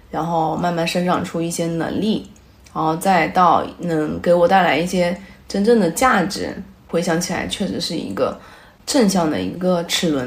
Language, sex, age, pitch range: Chinese, female, 20-39, 160-190 Hz